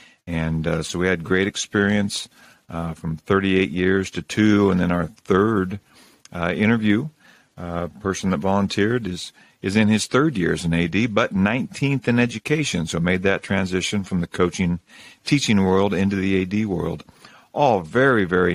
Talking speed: 165 wpm